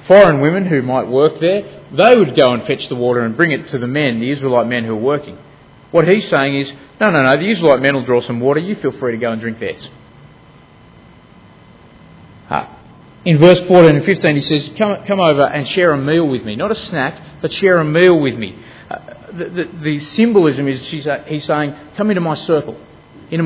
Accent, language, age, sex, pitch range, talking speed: Australian, English, 30-49, male, 130-170 Hz, 215 wpm